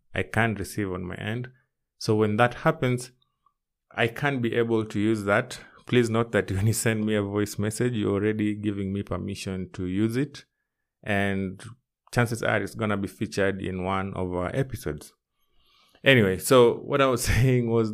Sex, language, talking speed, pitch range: male, English, 185 wpm, 100-120 Hz